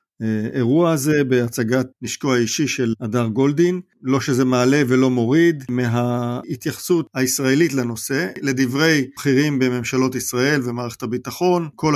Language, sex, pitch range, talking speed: Hebrew, male, 120-140 Hz, 120 wpm